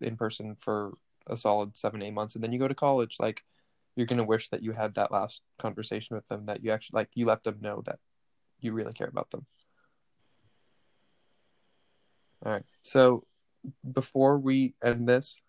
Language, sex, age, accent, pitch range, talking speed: English, male, 10-29, American, 110-125 Hz, 180 wpm